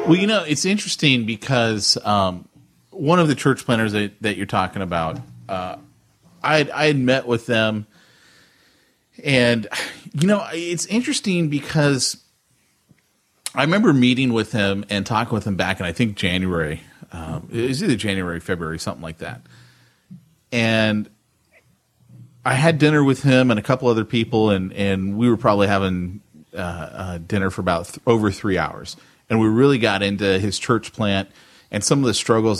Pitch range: 95-125 Hz